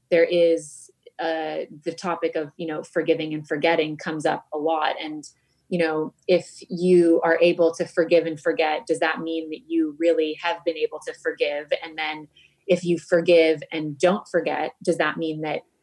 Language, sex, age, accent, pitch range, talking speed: English, female, 20-39, American, 160-180 Hz, 185 wpm